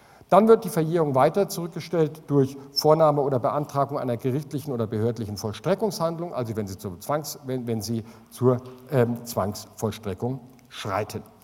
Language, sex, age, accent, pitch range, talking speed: German, male, 50-69, German, 130-185 Hz, 115 wpm